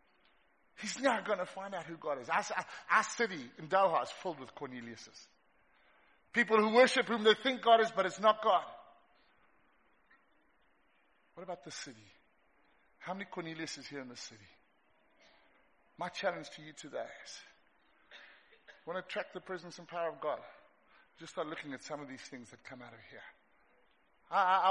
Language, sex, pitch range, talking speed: English, male, 140-205 Hz, 170 wpm